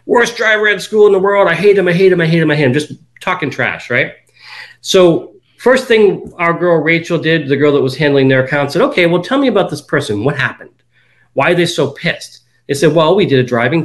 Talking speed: 255 wpm